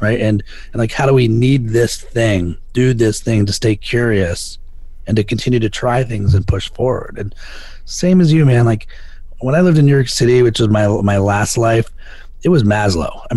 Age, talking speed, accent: 30-49, 215 wpm, American